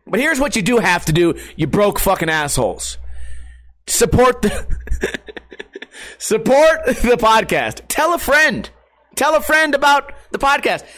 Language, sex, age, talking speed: English, male, 30-49, 135 wpm